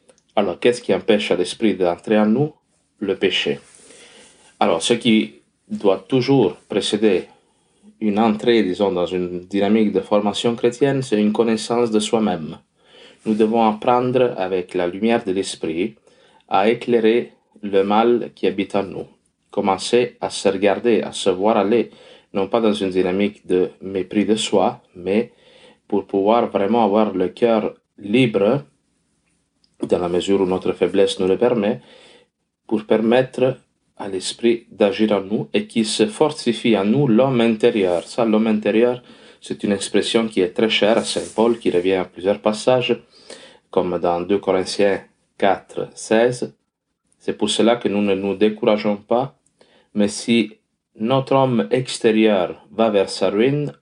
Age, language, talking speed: 30-49, French, 155 wpm